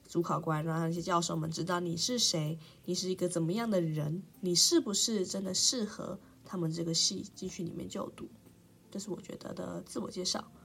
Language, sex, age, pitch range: Chinese, female, 20-39, 175-240 Hz